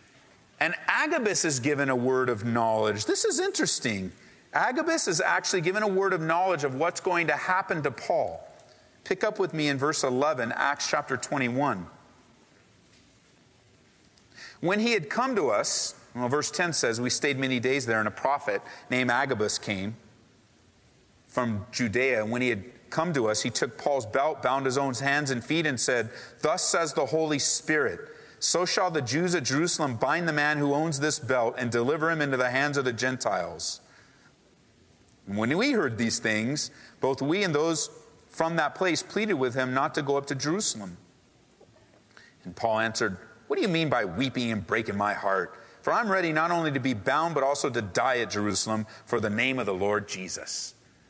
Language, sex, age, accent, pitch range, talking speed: English, male, 40-59, American, 120-160 Hz, 190 wpm